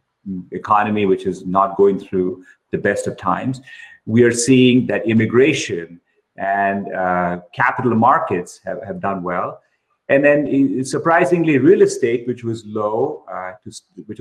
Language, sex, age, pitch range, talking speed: English, male, 50-69, 100-130 Hz, 140 wpm